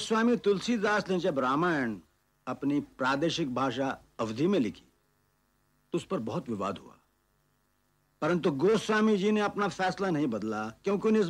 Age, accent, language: 60-79, native, Hindi